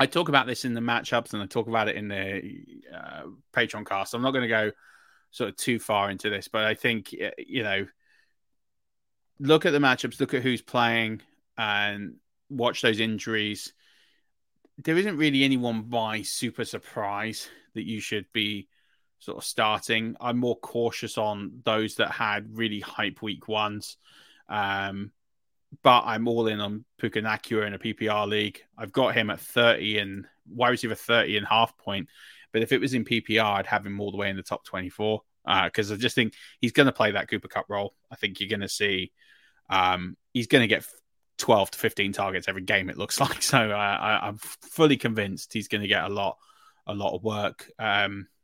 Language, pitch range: English, 100-120 Hz